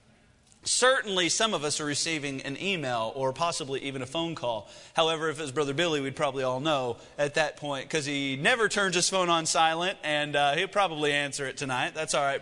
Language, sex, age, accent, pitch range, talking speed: English, male, 30-49, American, 140-190 Hz, 215 wpm